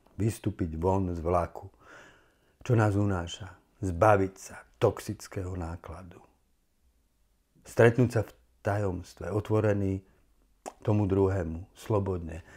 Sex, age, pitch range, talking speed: male, 50-69, 85-105 Hz, 90 wpm